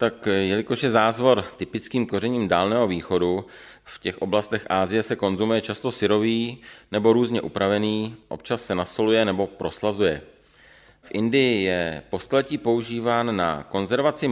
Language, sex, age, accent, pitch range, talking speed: Czech, male, 40-59, native, 95-115 Hz, 130 wpm